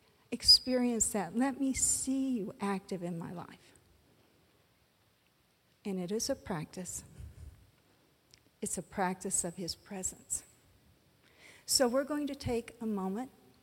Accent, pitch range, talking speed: American, 195-250 Hz, 125 wpm